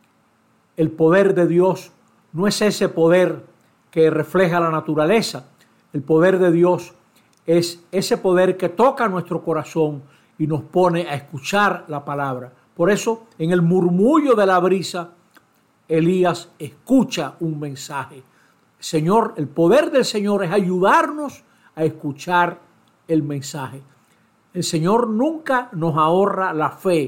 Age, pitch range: 60-79, 155-195 Hz